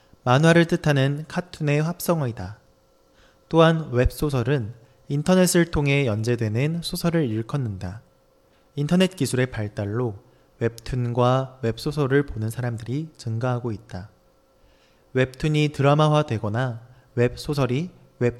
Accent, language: Korean, Chinese